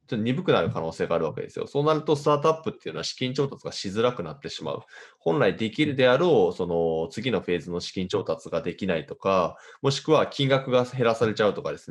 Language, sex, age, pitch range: Japanese, male, 20-39, 95-155 Hz